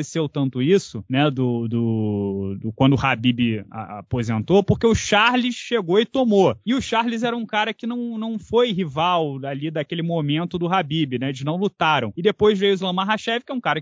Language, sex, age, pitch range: Portuguese, male, 20-39, 160-210 Hz